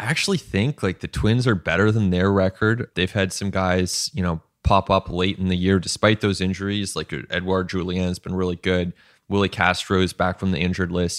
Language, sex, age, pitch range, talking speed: English, male, 20-39, 90-110 Hz, 220 wpm